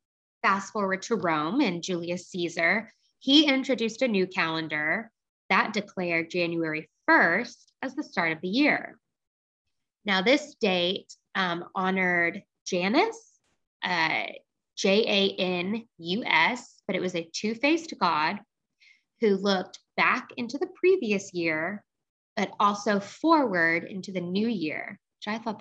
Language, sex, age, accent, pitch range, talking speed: English, female, 20-39, American, 175-220 Hz, 125 wpm